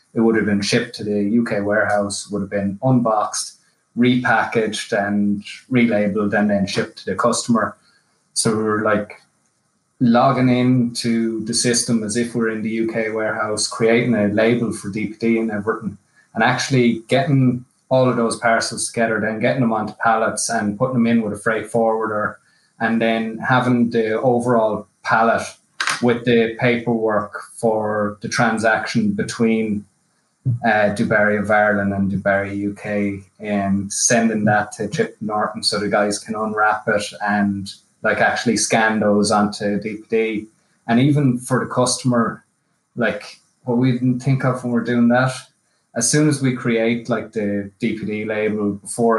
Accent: Irish